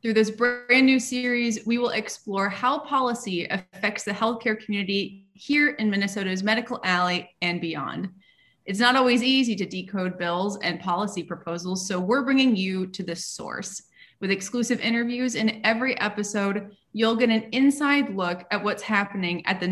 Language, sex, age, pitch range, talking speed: English, female, 20-39, 190-235 Hz, 165 wpm